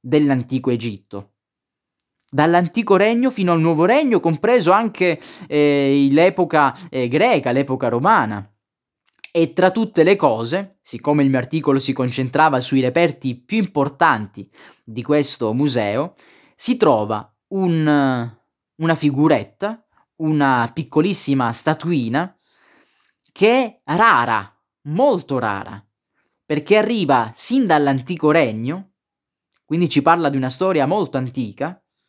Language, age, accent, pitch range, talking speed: Italian, 20-39, native, 125-170 Hz, 110 wpm